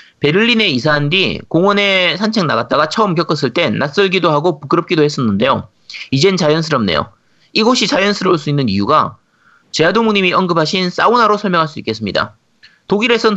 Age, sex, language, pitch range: 30-49, male, Korean, 140-205 Hz